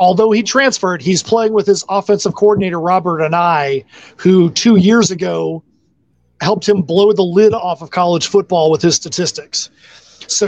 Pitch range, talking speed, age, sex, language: 165-200 Hz, 165 wpm, 30-49, male, English